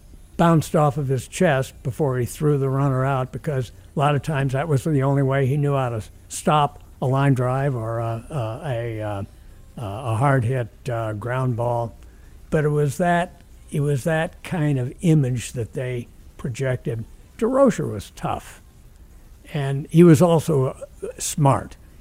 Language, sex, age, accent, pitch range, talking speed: English, male, 60-79, American, 110-145 Hz, 160 wpm